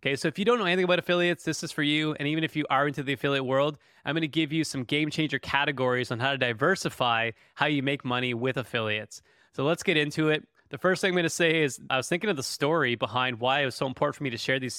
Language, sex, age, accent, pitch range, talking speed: English, male, 20-39, American, 130-160 Hz, 280 wpm